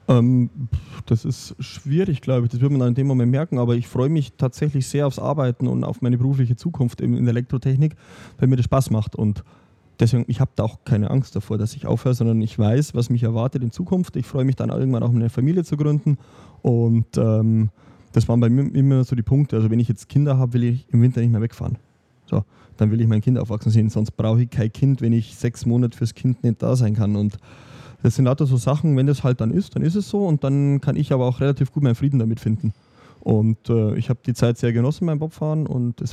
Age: 20-39